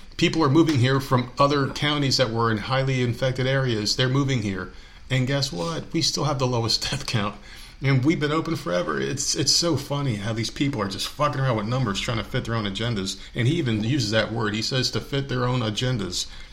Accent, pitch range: American, 100-130 Hz